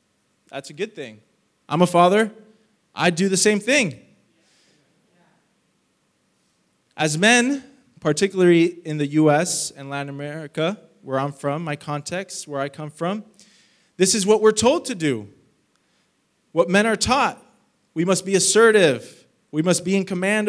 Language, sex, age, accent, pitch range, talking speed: English, male, 20-39, American, 155-205 Hz, 145 wpm